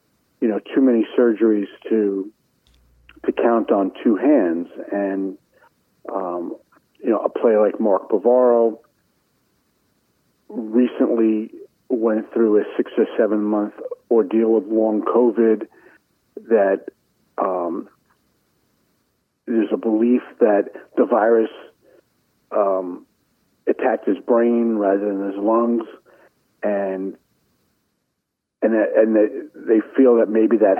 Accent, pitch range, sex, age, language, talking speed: American, 105-120 Hz, male, 50-69, English, 105 wpm